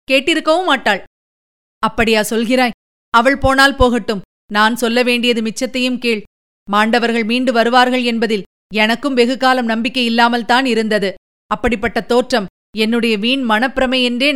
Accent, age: native, 30-49